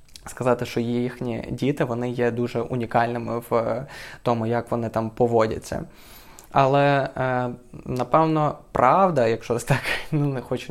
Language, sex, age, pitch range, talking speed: Ukrainian, male, 20-39, 120-140 Hz, 125 wpm